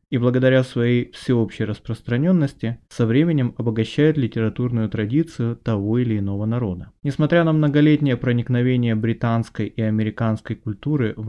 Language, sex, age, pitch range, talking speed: Russian, male, 20-39, 115-140 Hz, 120 wpm